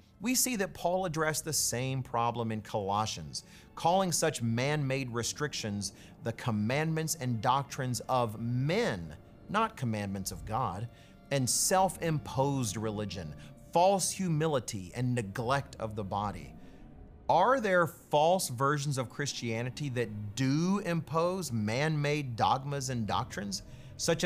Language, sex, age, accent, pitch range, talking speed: English, male, 40-59, American, 115-155 Hz, 120 wpm